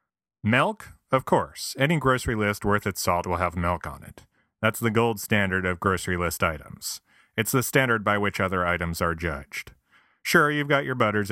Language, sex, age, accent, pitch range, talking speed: English, male, 30-49, American, 90-125 Hz, 190 wpm